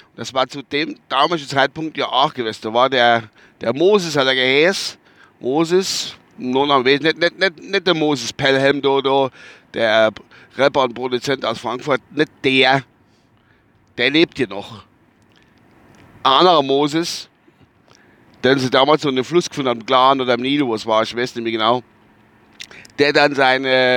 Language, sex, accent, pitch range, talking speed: German, male, German, 125-155 Hz, 170 wpm